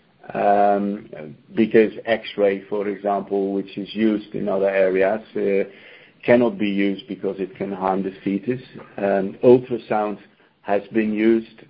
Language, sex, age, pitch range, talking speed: English, male, 60-79, 100-115 Hz, 135 wpm